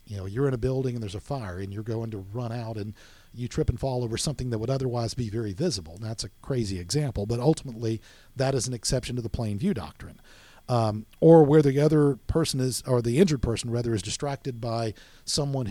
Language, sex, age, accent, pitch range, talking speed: English, male, 50-69, American, 115-145 Hz, 235 wpm